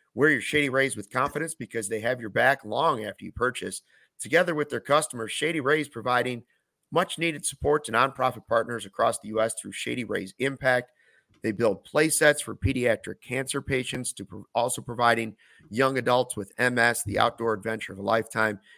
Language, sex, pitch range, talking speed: English, male, 110-145 Hz, 175 wpm